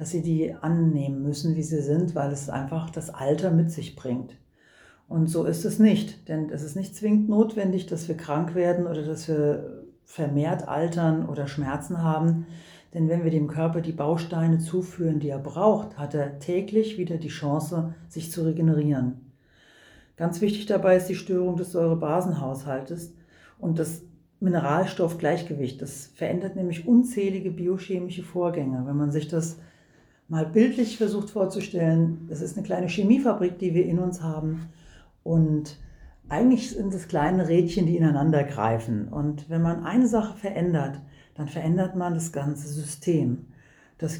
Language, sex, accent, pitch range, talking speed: German, female, German, 150-180 Hz, 160 wpm